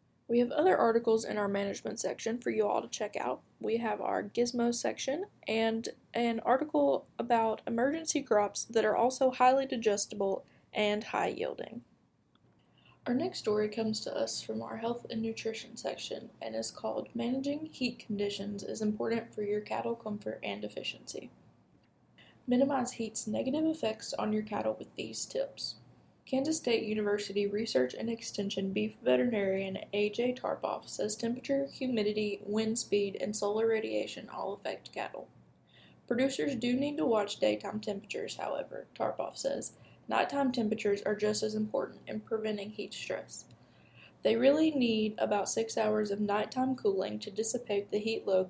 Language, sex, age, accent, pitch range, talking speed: English, female, 10-29, American, 205-245 Hz, 155 wpm